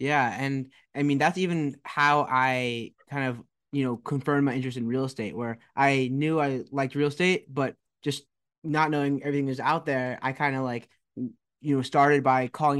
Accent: American